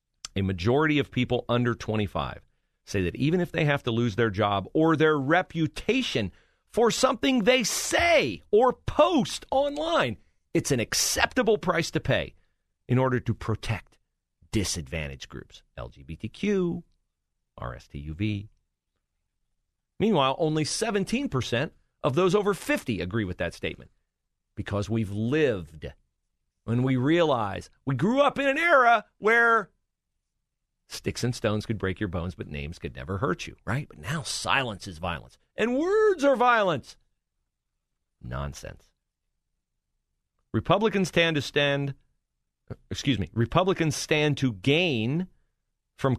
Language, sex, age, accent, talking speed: English, male, 40-59, American, 130 wpm